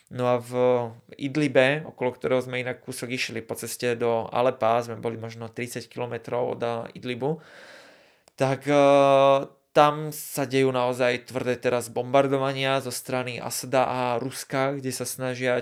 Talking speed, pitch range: 140 wpm, 120-135 Hz